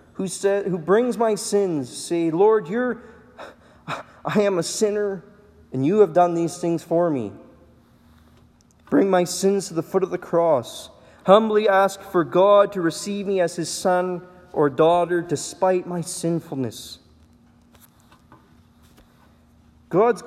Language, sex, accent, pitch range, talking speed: English, male, American, 120-190 Hz, 135 wpm